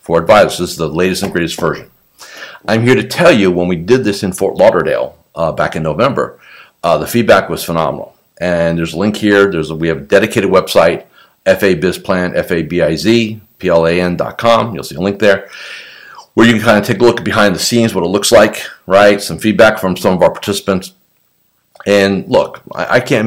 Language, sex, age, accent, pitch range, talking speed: English, male, 50-69, American, 85-105 Hz, 195 wpm